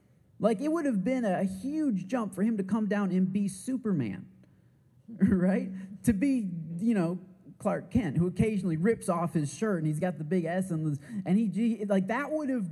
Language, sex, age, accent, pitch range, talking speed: English, male, 30-49, American, 135-200 Hz, 205 wpm